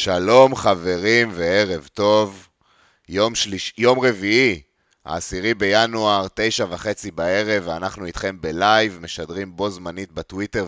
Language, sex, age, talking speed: Hebrew, male, 30-49, 100 wpm